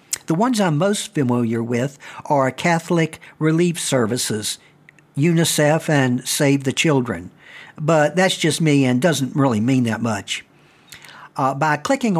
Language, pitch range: English, 130-165 Hz